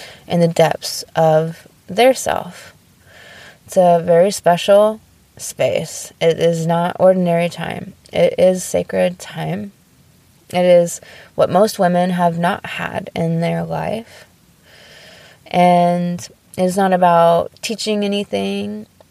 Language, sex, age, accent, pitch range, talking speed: English, female, 20-39, American, 165-185 Hz, 115 wpm